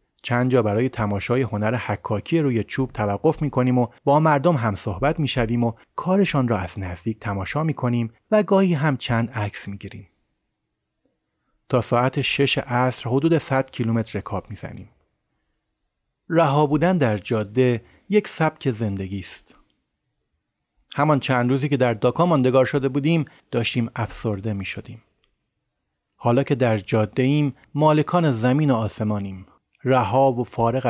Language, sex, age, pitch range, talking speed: Persian, male, 30-49, 105-140 Hz, 150 wpm